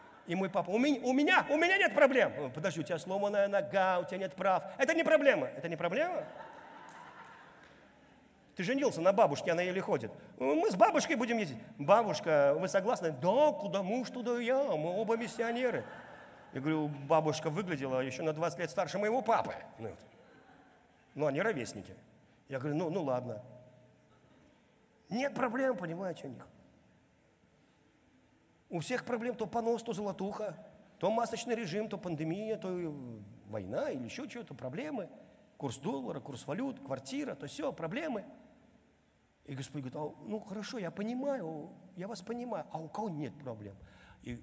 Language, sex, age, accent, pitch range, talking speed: Russian, male, 50-69, native, 135-220 Hz, 155 wpm